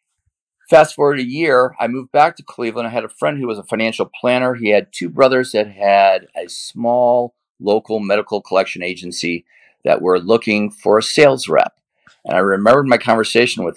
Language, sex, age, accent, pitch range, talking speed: English, male, 40-59, American, 100-125 Hz, 185 wpm